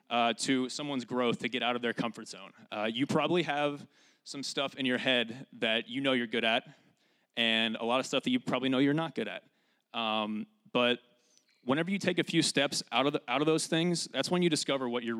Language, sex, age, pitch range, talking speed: English, male, 30-49, 120-165 Hz, 235 wpm